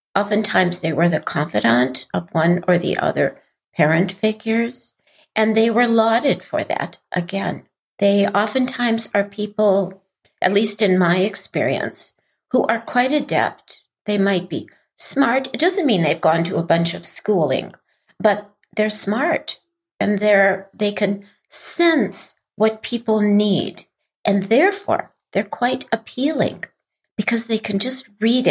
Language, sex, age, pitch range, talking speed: English, female, 60-79, 185-225 Hz, 140 wpm